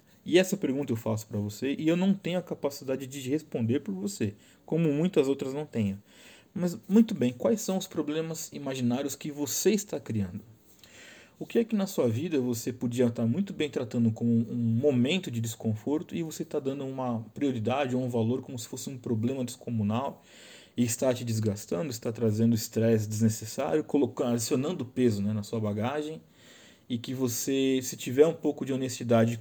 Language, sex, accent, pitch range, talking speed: Portuguese, male, Brazilian, 115-155 Hz, 185 wpm